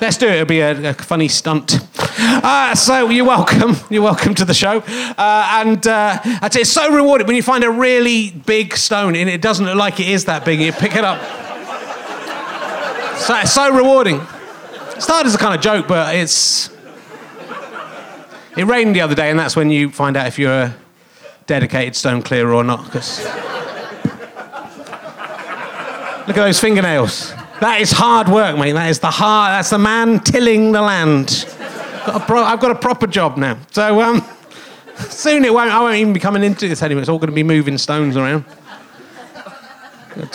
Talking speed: 190 wpm